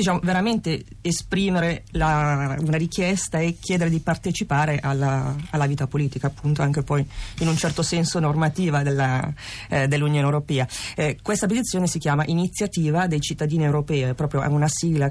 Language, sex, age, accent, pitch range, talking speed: Italian, female, 30-49, native, 140-170 Hz, 145 wpm